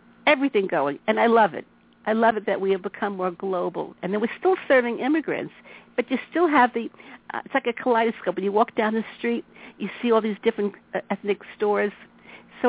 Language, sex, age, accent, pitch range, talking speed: English, female, 60-79, American, 195-255 Hz, 220 wpm